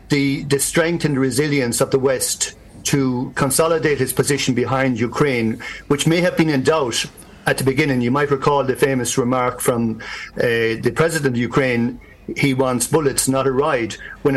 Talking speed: 175 wpm